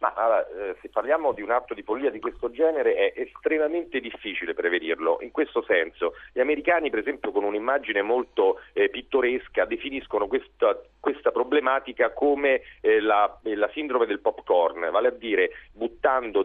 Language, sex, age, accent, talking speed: Italian, male, 40-59, native, 155 wpm